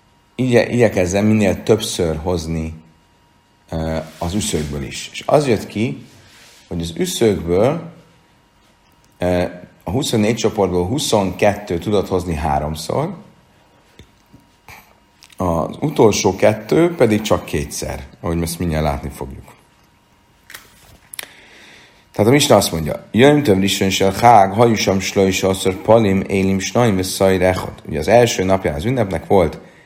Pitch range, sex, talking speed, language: 85-105 Hz, male, 110 wpm, Hungarian